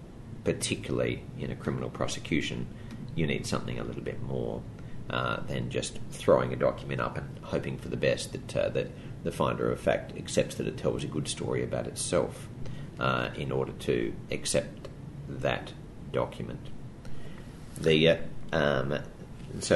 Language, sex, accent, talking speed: English, male, Australian, 155 wpm